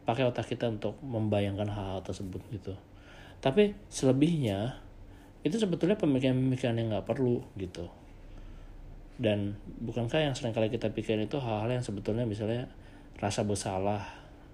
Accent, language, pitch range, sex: native, Indonesian, 100-130 Hz, male